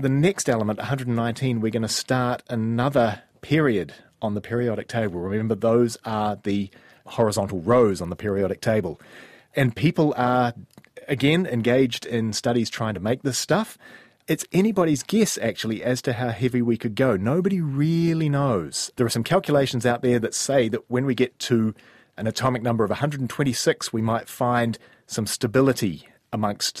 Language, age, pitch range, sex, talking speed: English, 30-49, 105-130 Hz, male, 165 wpm